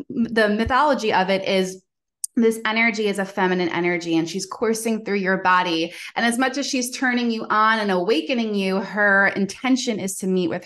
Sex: female